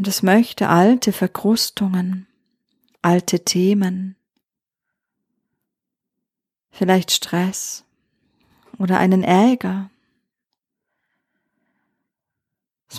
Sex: female